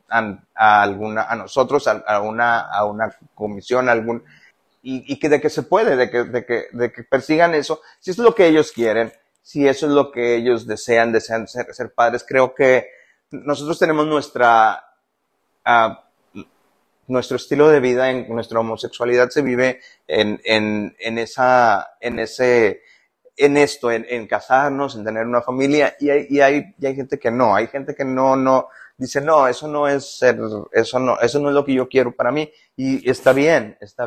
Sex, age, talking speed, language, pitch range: male, 30-49, 195 wpm, Spanish, 115-145 Hz